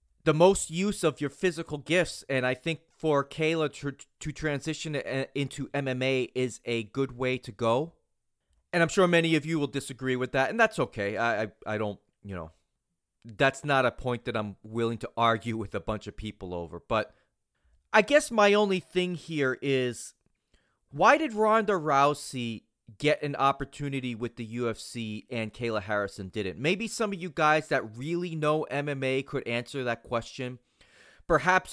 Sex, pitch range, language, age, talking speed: male, 120-160 Hz, English, 30-49, 180 wpm